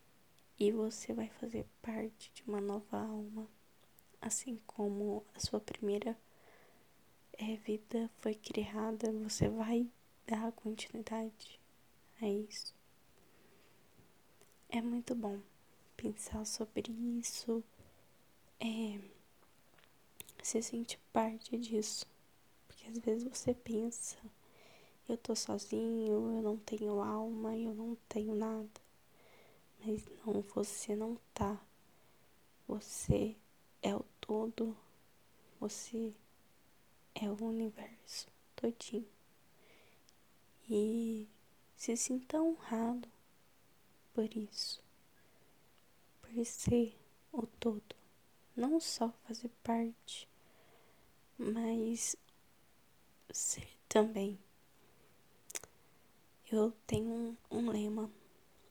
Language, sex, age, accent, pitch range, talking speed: Portuguese, female, 10-29, Brazilian, 215-230 Hz, 90 wpm